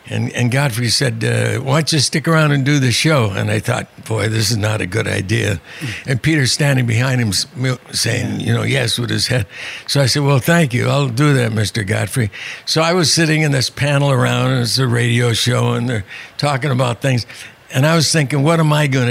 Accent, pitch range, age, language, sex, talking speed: American, 115-150 Hz, 60-79, English, male, 225 wpm